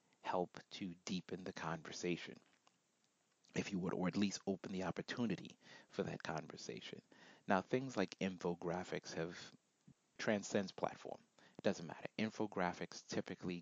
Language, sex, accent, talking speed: English, male, American, 130 wpm